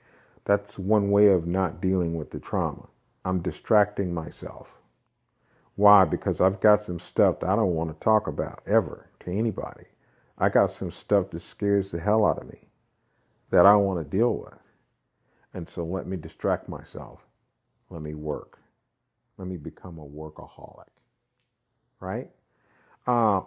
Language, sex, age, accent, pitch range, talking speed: English, male, 50-69, American, 95-120 Hz, 155 wpm